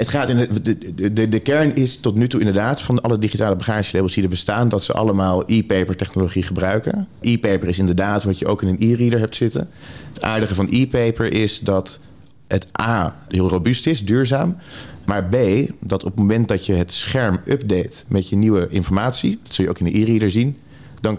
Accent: Dutch